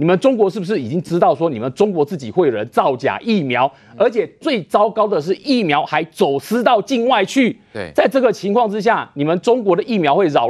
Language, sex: Chinese, male